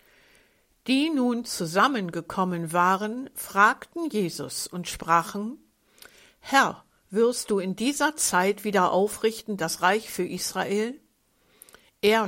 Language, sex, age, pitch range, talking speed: German, female, 60-79, 180-225 Hz, 105 wpm